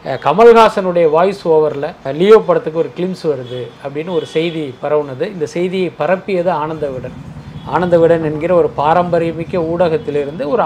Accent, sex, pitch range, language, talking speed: native, male, 160-200 Hz, Tamil, 125 wpm